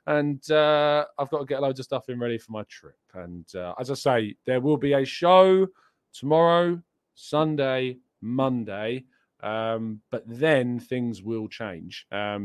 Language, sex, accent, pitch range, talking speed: English, male, British, 105-140 Hz, 165 wpm